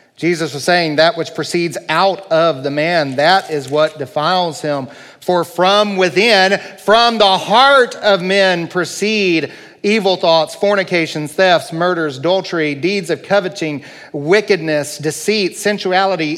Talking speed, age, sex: 130 wpm, 40-59, male